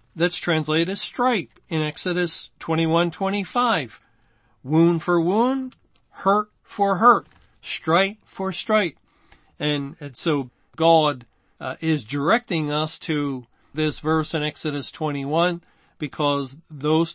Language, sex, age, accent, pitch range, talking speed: English, male, 40-59, American, 150-180 Hz, 115 wpm